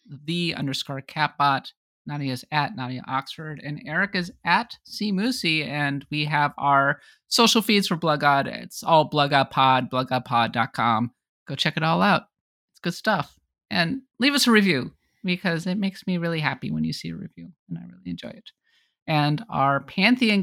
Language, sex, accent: English, male, American